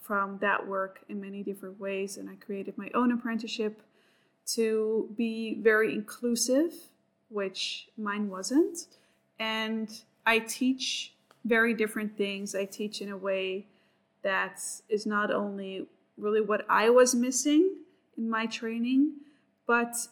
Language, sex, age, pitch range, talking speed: English, female, 20-39, 205-235 Hz, 130 wpm